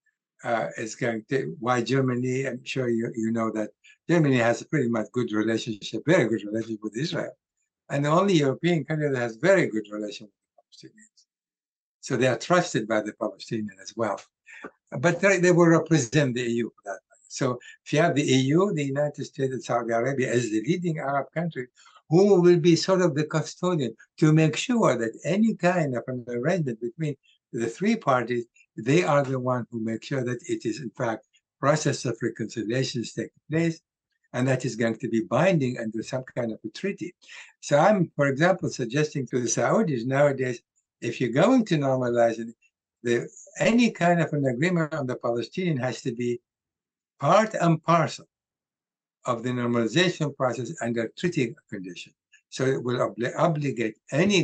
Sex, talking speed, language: male, 180 wpm, English